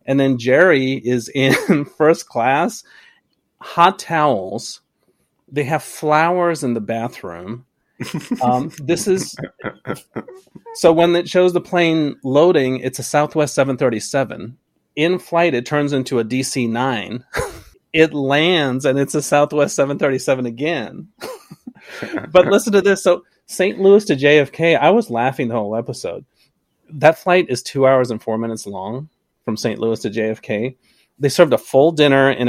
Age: 30-49